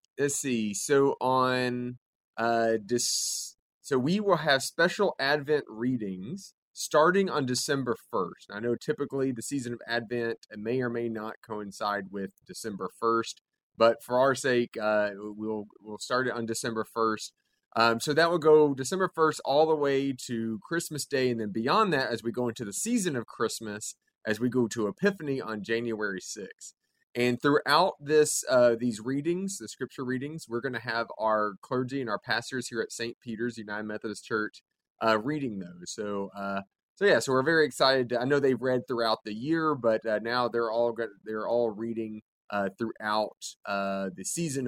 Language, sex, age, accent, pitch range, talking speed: English, male, 30-49, American, 110-135 Hz, 180 wpm